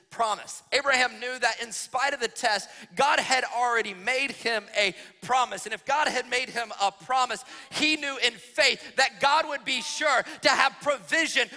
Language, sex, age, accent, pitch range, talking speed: English, male, 30-49, American, 270-330 Hz, 185 wpm